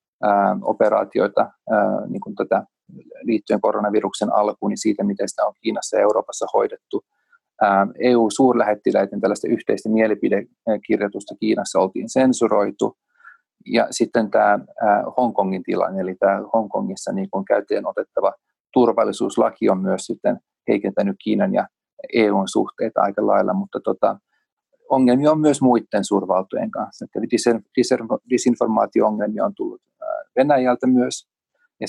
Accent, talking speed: native, 120 wpm